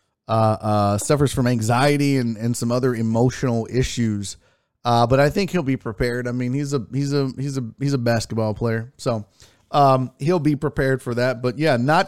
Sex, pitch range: male, 125-175 Hz